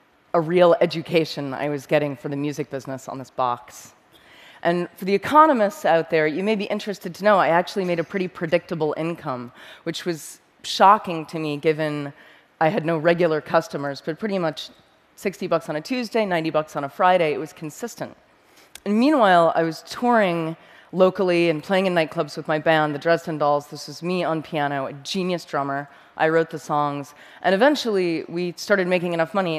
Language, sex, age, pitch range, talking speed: English, female, 30-49, 150-175 Hz, 190 wpm